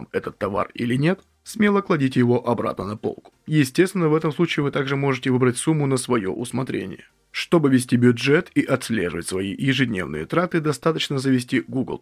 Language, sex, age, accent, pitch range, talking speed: Russian, male, 20-39, native, 125-165 Hz, 165 wpm